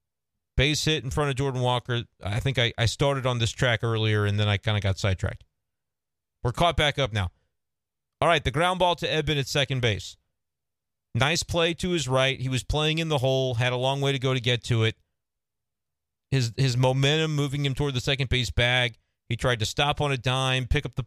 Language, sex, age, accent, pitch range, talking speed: English, male, 40-59, American, 110-140 Hz, 225 wpm